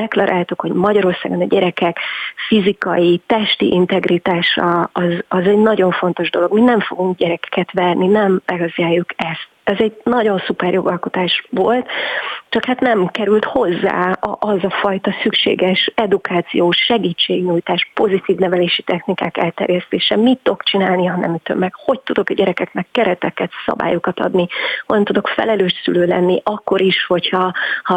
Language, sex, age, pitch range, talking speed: Hungarian, female, 30-49, 180-215 Hz, 145 wpm